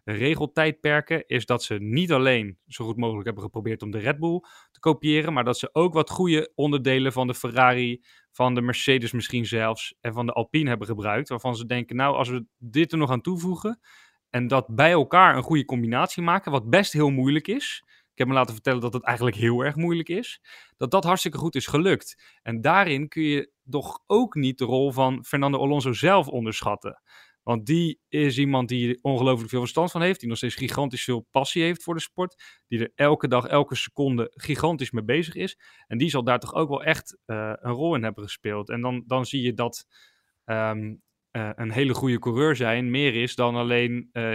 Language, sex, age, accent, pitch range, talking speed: Dutch, male, 30-49, Dutch, 120-150 Hz, 210 wpm